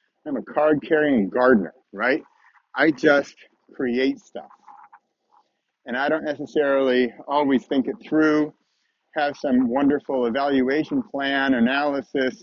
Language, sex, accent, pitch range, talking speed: English, male, American, 135-170 Hz, 110 wpm